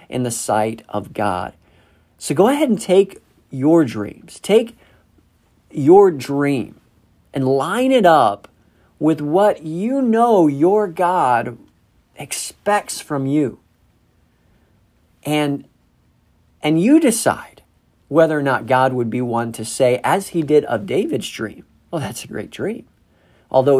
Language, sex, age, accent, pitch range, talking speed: English, male, 40-59, American, 115-175 Hz, 135 wpm